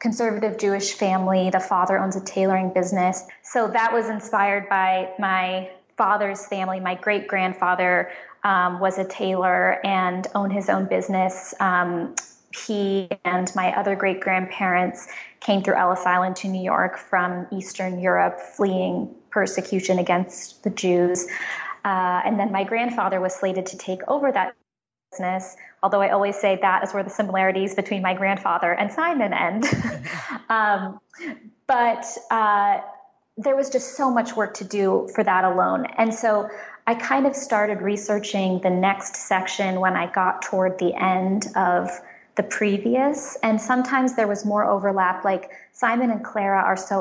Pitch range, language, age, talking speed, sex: 185-210 Hz, English, 20-39, 150 wpm, female